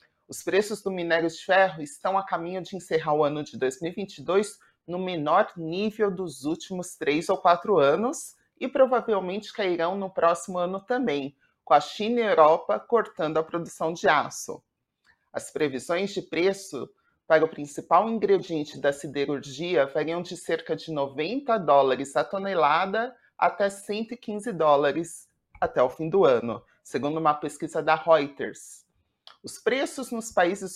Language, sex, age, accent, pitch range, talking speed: Portuguese, male, 30-49, Brazilian, 160-200 Hz, 150 wpm